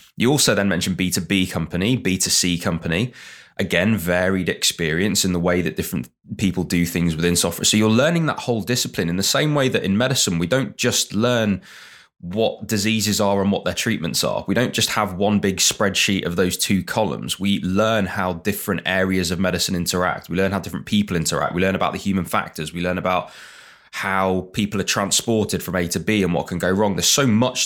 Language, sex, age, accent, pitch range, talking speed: English, male, 20-39, British, 90-115 Hz, 210 wpm